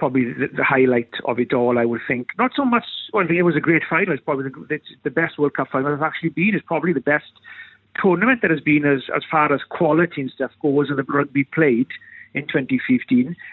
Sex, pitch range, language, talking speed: male, 130-175 Hz, English, 255 wpm